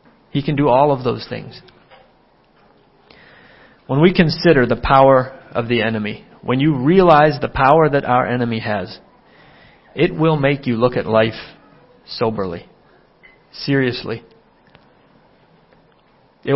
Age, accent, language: 40-59, American, English